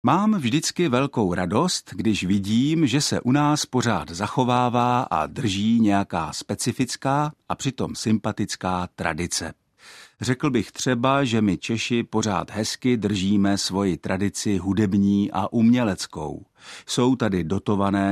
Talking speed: 125 wpm